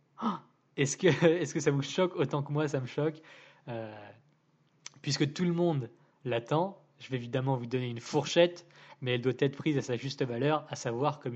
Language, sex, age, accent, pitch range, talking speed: French, male, 20-39, French, 120-145 Hz, 200 wpm